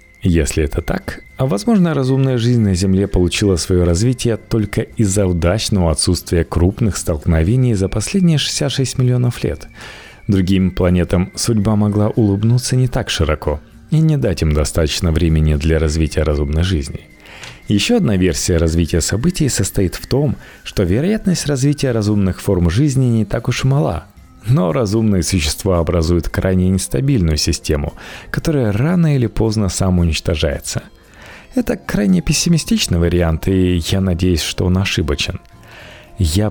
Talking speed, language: 135 wpm, Russian